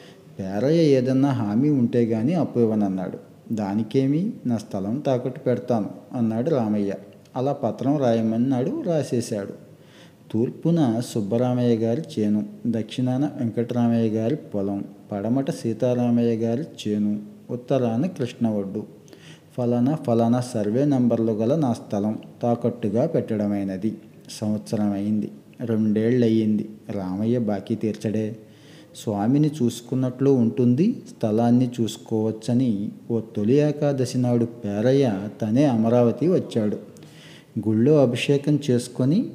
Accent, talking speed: native, 95 wpm